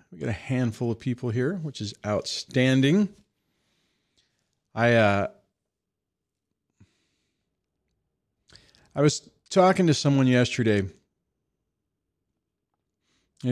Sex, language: male, English